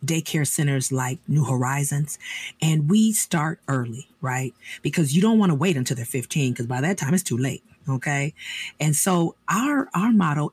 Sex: female